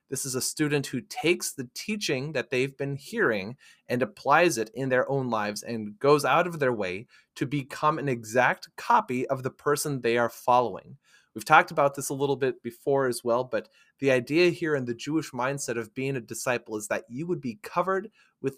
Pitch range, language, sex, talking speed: 120-145 Hz, English, male, 210 wpm